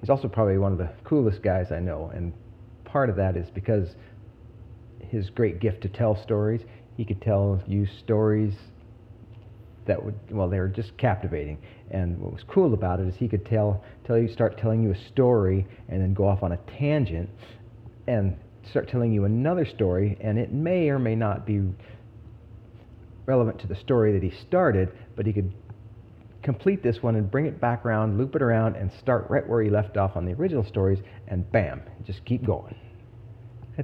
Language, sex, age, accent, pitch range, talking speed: English, male, 40-59, American, 100-115 Hz, 195 wpm